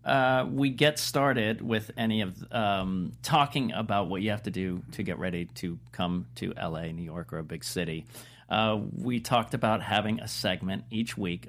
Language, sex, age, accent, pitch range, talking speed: English, male, 40-59, American, 100-125 Hz, 195 wpm